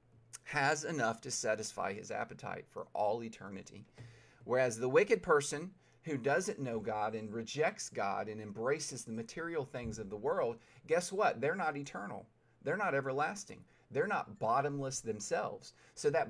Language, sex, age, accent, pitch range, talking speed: English, male, 40-59, American, 115-150 Hz, 155 wpm